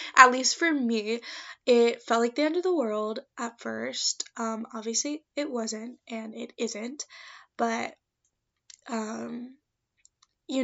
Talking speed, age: 135 wpm, 10-29